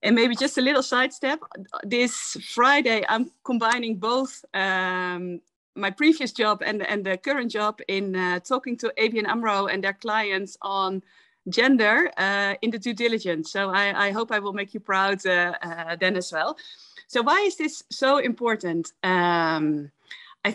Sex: female